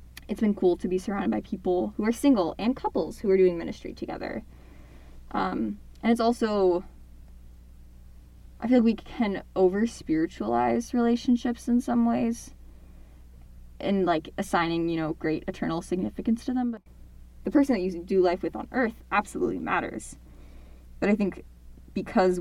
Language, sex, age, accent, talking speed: English, female, 10-29, American, 155 wpm